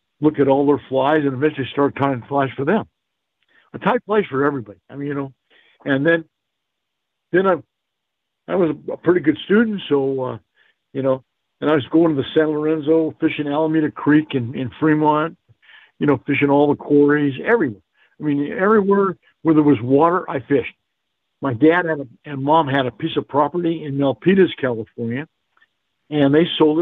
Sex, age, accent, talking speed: male, 60-79, American, 185 wpm